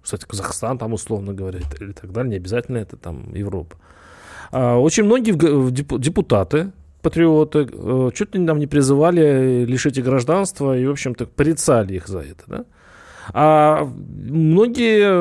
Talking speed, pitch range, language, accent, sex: 135 wpm, 120-170 Hz, Russian, native, male